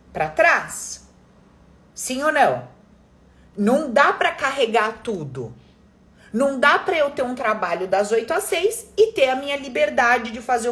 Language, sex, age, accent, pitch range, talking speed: Portuguese, female, 30-49, Brazilian, 200-310 Hz, 155 wpm